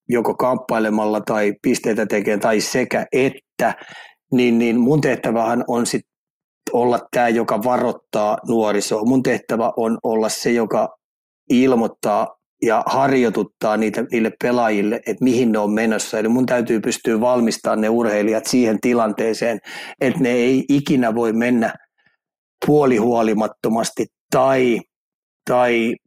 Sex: male